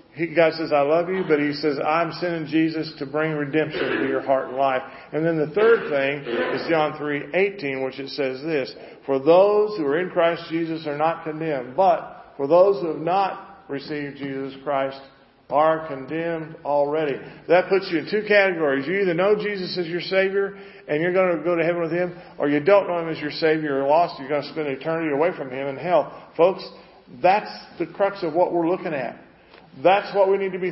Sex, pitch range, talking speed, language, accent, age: male, 145-180 Hz, 215 wpm, English, American, 50-69